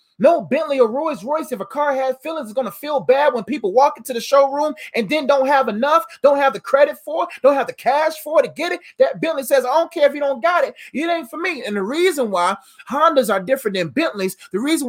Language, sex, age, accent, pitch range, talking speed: English, male, 30-49, American, 245-320 Hz, 265 wpm